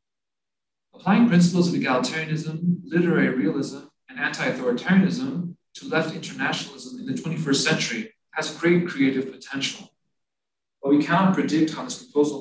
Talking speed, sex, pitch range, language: 125 wpm, male, 145-215 Hz, English